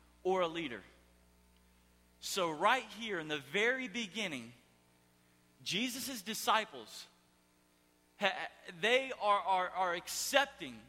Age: 40-59